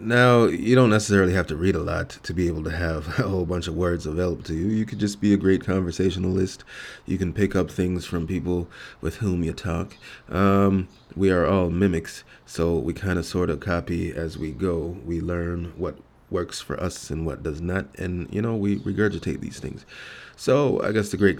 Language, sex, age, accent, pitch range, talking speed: English, male, 30-49, American, 85-100 Hz, 215 wpm